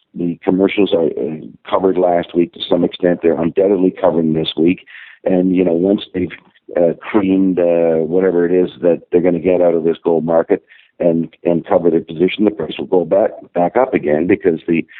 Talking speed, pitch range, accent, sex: 200 wpm, 85-95 Hz, American, male